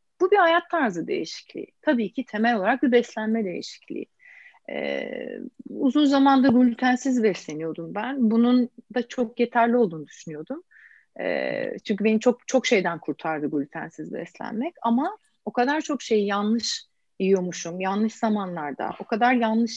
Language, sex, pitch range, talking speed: Turkish, female, 205-275 Hz, 135 wpm